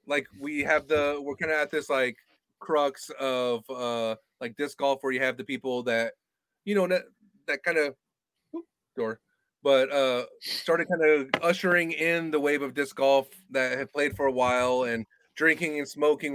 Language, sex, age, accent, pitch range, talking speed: English, male, 30-49, American, 135-190 Hz, 185 wpm